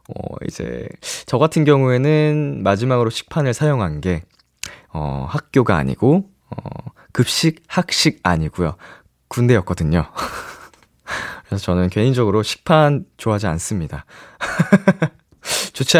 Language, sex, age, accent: Korean, male, 20-39, native